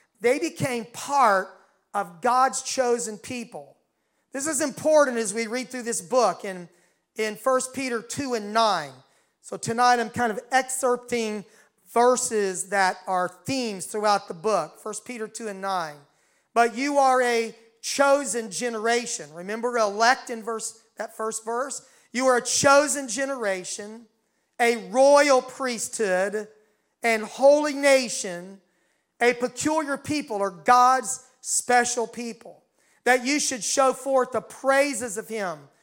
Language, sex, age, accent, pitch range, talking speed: English, male, 40-59, American, 215-265 Hz, 135 wpm